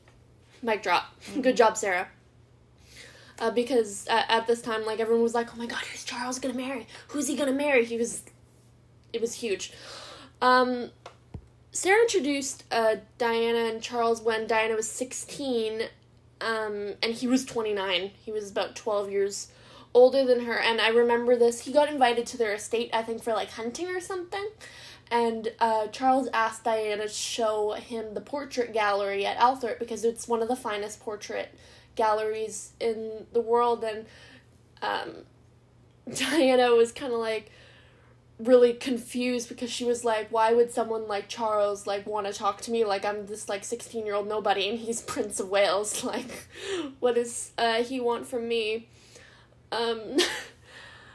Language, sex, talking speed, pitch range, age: English, female, 165 wpm, 215-245 Hz, 10-29